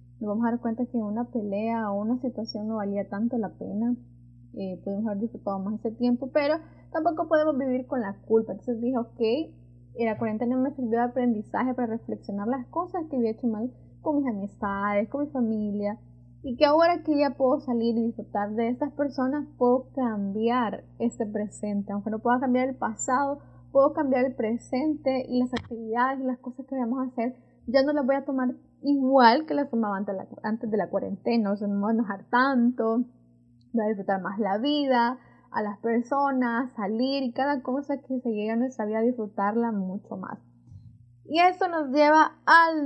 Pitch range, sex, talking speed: 210-265 Hz, female, 190 wpm